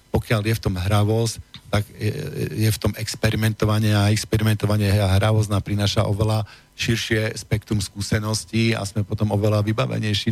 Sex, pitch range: male, 105-115 Hz